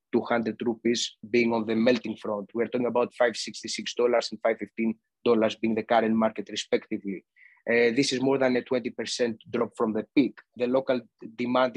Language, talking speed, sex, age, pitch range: English, 175 wpm, male, 20-39, 110-125 Hz